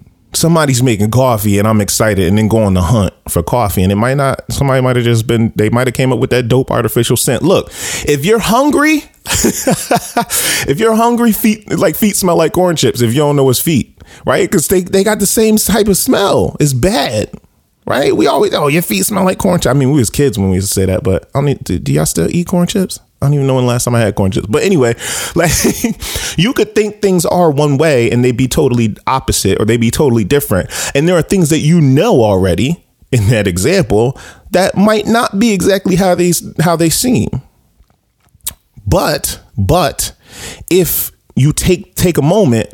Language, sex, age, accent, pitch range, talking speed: English, male, 30-49, American, 105-175 Hz, 220 wpm